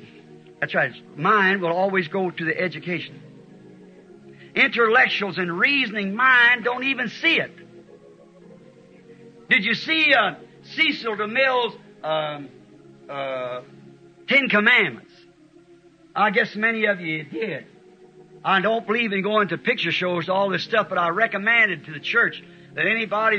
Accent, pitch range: American, 180-235 Hz